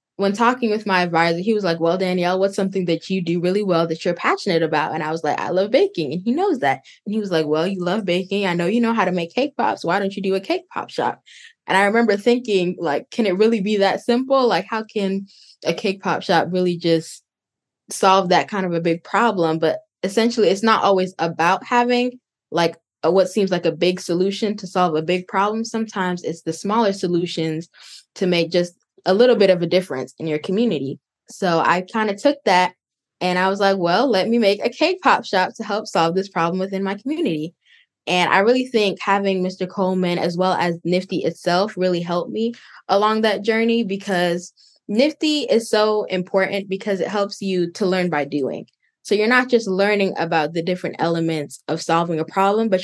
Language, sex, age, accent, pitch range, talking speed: English, female, 10-29, American, 175-215 Hz, 215 wpm